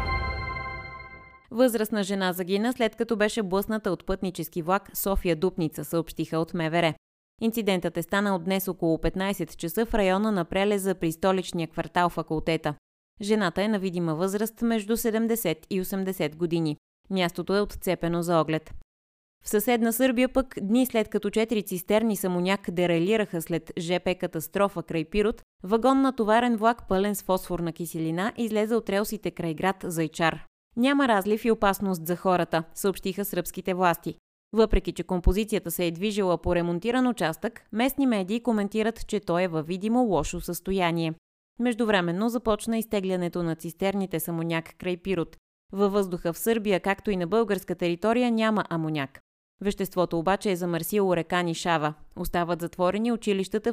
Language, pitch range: Bulgarian, 165-210 Hz